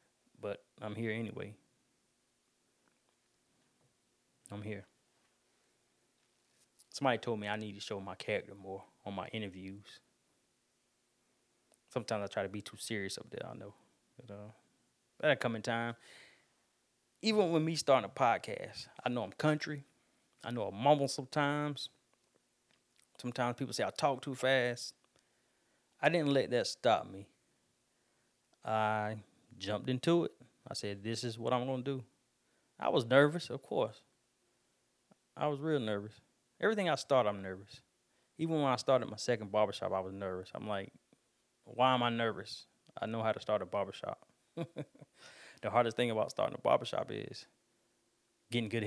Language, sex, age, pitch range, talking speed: English, male, 20-39, 105-130 Hz, 150 wpm